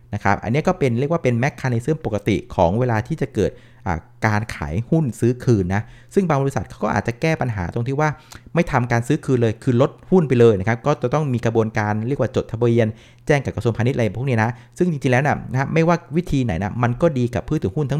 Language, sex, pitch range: Thai, male, 115-150 Hz